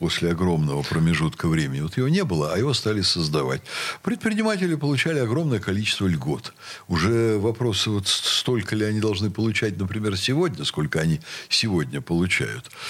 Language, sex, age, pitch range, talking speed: Russian, male, 60-79, 85-130 Hz, 145 wpm